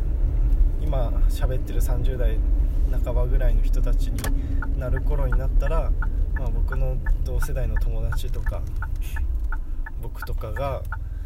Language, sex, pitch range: Japanese, male, 65-80 Hz